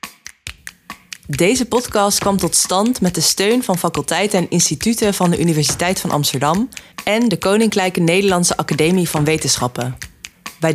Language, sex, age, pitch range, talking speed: Dutch, female, 20-39, 165-210 Hz, 140 wpm